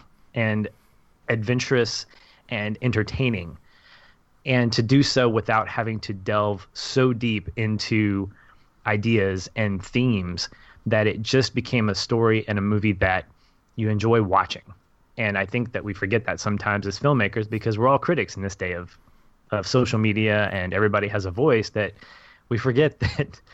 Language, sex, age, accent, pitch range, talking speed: English, male, 20-39, American, 100-120 Hz, 155 wpm